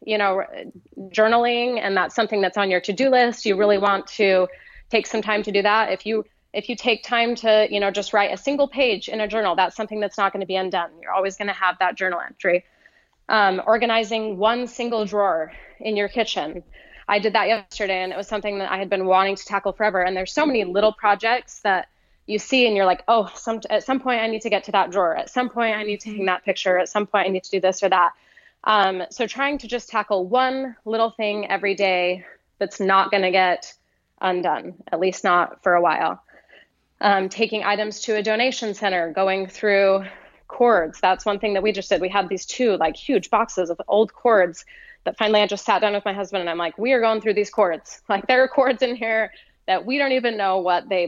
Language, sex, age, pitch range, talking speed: English, female, 20-39, 195-225 Hz, 240 wpm